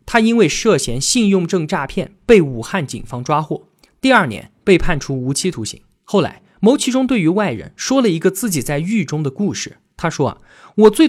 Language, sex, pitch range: Chinese, male, 150-215 Hz